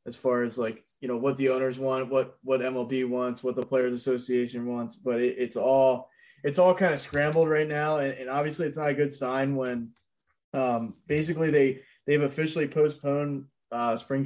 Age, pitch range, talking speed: 20-39, 125-140 Hz, 200 wpm